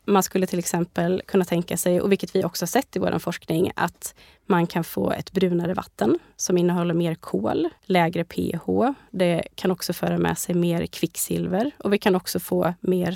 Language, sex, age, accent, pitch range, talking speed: Swedish, female, 20-39, native, 175-205 Hz, 195 wpm